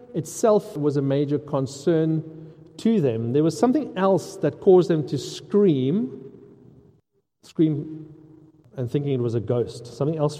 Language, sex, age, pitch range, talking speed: English, male, 40-59, 125-175 Hz, 145 wpm